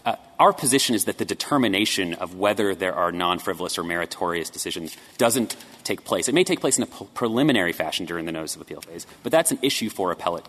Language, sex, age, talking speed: English, male, 30-49, 215 wpm